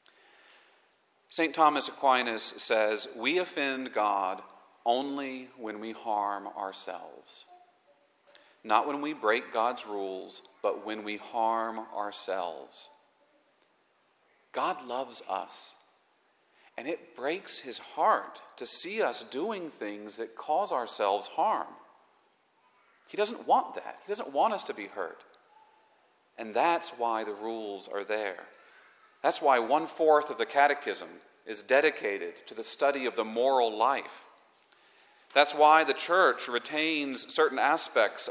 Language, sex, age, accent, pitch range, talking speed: English, male, 40-59, American, 115-165 Hz, 125 wpm